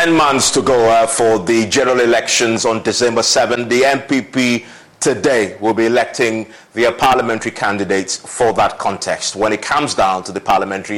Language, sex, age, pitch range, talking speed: English, male, 30-49, 110-130 Hz, 165 wpm